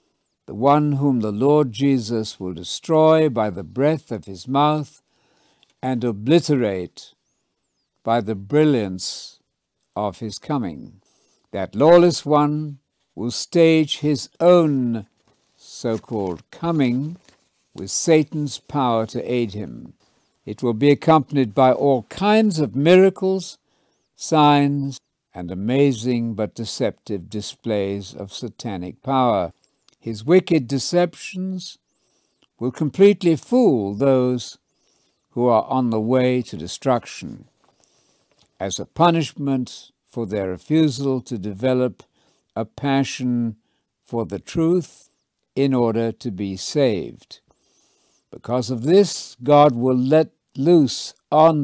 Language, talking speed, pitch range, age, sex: English, 110 wpm, 115-150 Hz, 60-79, male